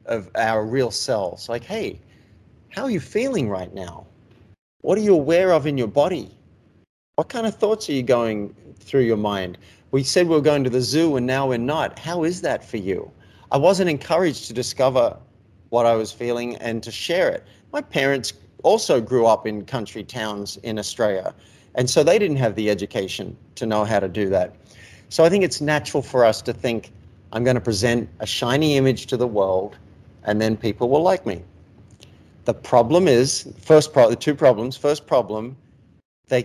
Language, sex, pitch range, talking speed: English, male, 105-140 Hz, 195 wpm